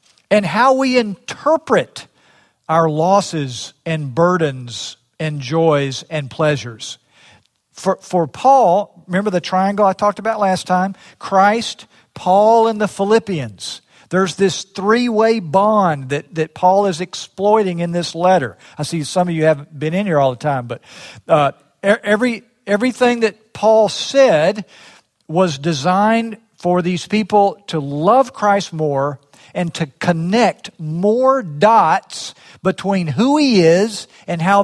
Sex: male